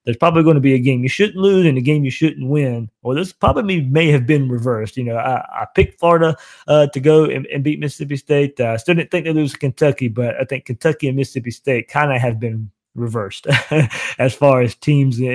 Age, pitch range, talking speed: 20-39, 120-150 Hz, 240 wpm